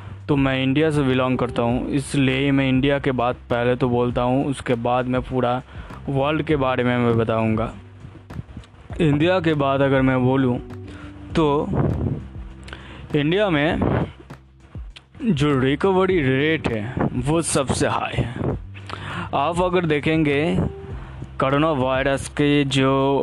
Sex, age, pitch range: male, 20-39, 120-145 Hz